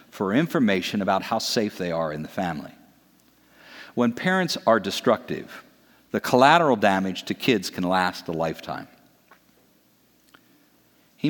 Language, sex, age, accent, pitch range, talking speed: English, male, 50-69, American, 95-130 Hz, 125 wpm